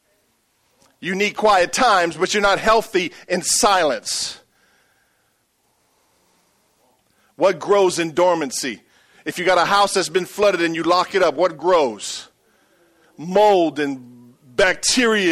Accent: American